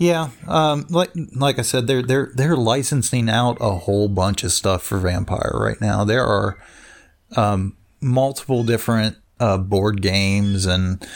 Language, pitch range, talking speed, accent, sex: English, 105-125 Hz, 155 wpm, American, male